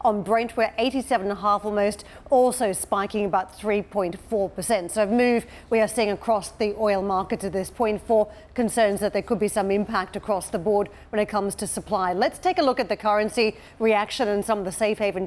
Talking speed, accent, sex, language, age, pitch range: 205 wpm, Australian, female, English, 40-59, 195-220 Hz